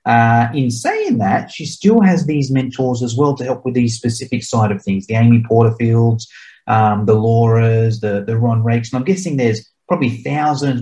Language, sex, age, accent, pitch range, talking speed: English, male, 30-49, Australian, 115-140 Hz, 195 wpm